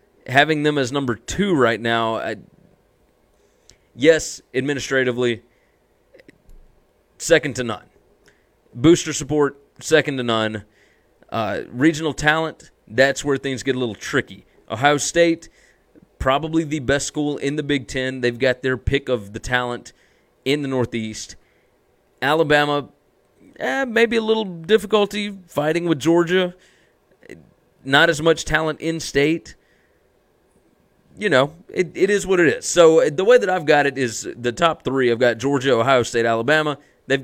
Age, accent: 30-49, American